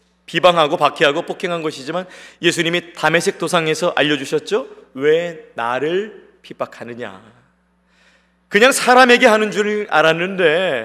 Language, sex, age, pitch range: Korean, male, 40-59, 135-180 Hz